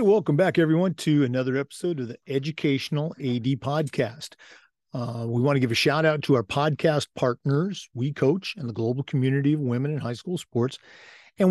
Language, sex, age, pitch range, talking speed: English, male, 50-69, 120-155 Hz, 195 wpm